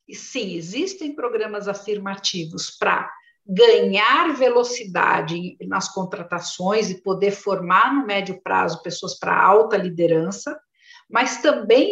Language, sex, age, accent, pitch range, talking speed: Portuguese, female, 50-69, Brazilian, 190-260 Hz, 105 wpm